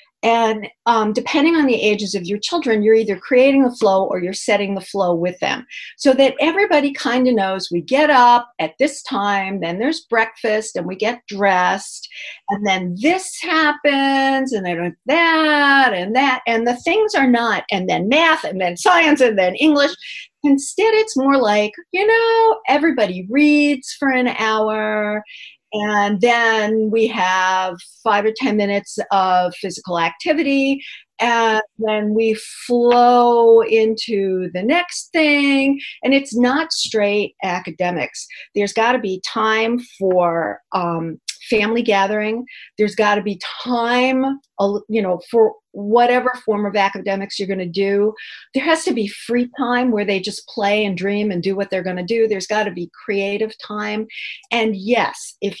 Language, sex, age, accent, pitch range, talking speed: English, female, 50-69, American, 200-270 Hz, 160 wpm